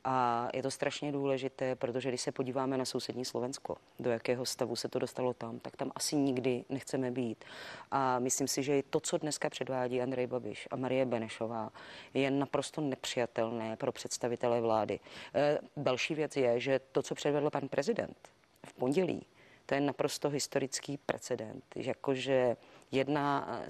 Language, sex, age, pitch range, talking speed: Czech, female, 30-49, 130-150 Hz, 165 wpm